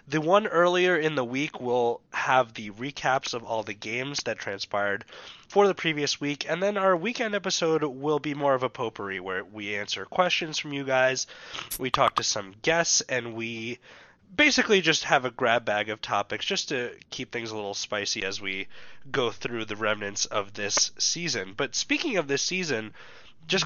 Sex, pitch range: male, 120-185 Hz